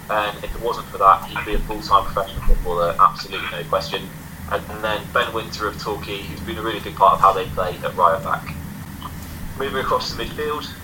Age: 20-39